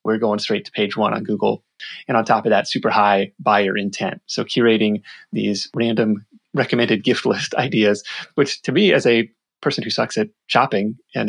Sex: male